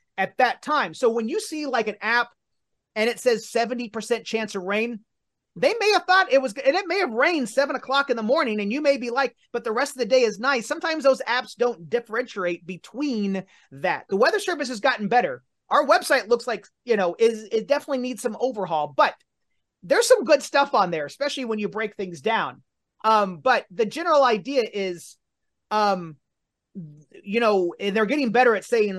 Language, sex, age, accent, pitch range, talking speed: English, male, 30-49, American, 185-245 Hz, 205 wpm